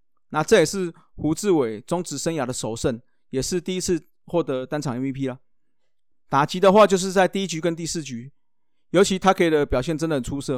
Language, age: Chinese, 30-49